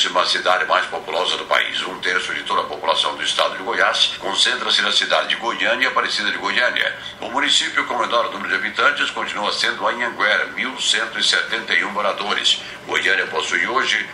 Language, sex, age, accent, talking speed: Portuguese, male, 60-79, Brazilian, 170 wpm